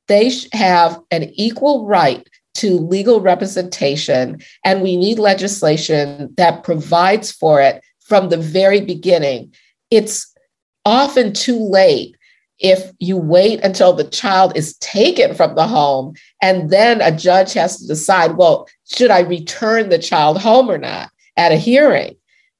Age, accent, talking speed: 50-69, American, 145 wpm